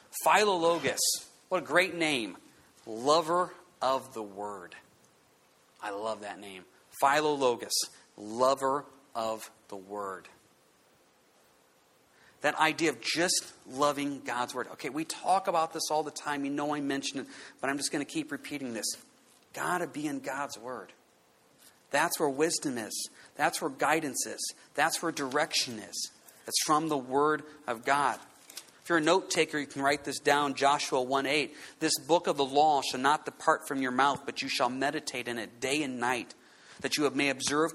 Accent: American